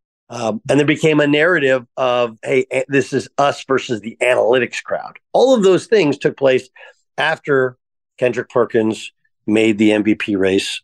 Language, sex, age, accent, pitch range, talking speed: English, male, 50-69, American, 105-140 Hz, 155 wpm